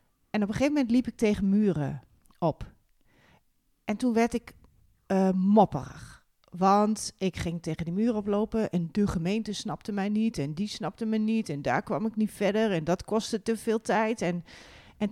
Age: 40-59